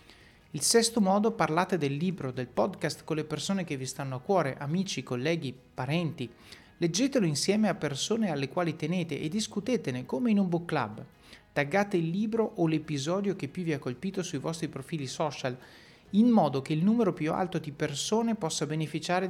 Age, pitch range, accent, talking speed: 30-49, 140-190 Hz, native, 180 wpm